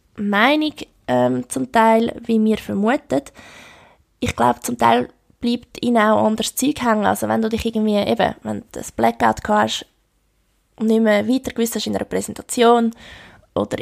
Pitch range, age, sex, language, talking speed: 200-235 Hz, 20-39, female, German, 155 wpm